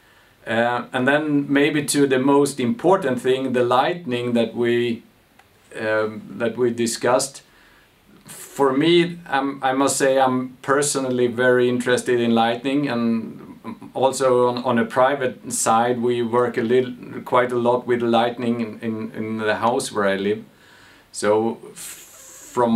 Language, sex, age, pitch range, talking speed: English, male, 50-69, 120-140 Hz, 140 wpm